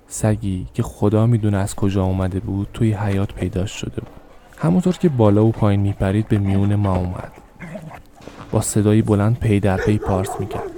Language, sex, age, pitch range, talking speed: Persian, male, 20-39, 100-115 Hz, 180 wpm